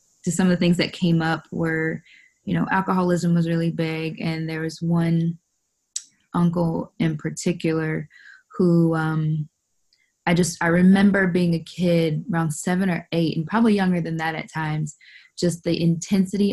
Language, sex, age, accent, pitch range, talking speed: English, female, 20-39, American, 155-175 Hz, 165 wpm